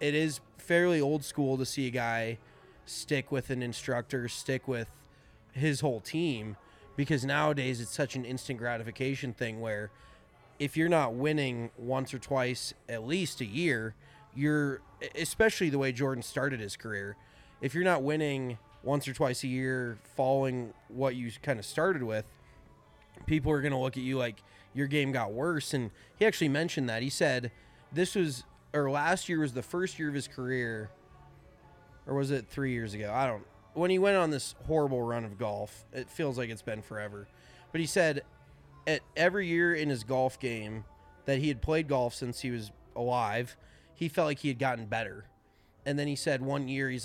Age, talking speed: 20-39, 190 wpm